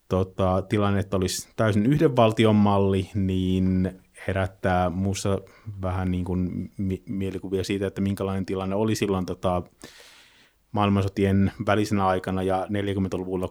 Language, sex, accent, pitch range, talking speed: Finnish, male, native, 95-105 Hz, 120 wpm